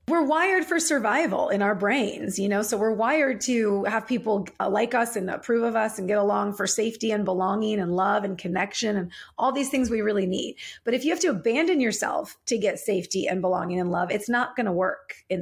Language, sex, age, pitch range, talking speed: English, female, 30-49, 205-260 Hz, 230 wpm